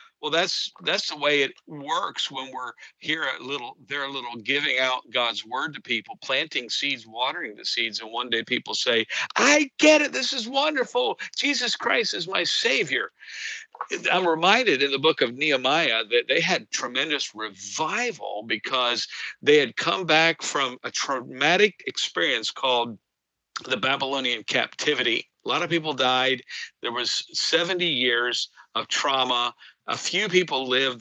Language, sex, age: English, male, 50-69